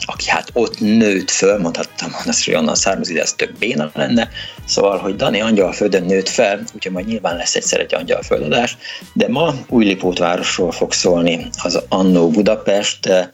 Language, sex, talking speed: Hungarian, male, 165 wpm